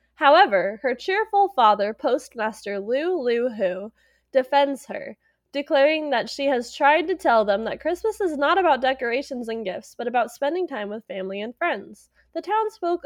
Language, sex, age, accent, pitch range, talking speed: English, female, 20-39, American, 210-305 Hz, 165 wpm